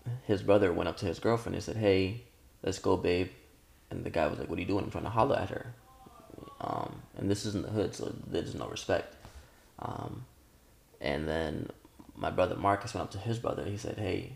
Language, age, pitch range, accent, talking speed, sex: English, 20-39, 90-110 Hz, American, 225 wpm, male